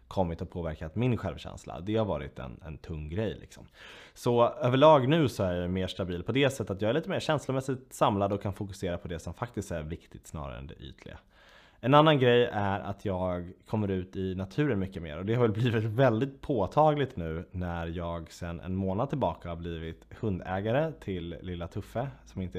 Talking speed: 205 wpm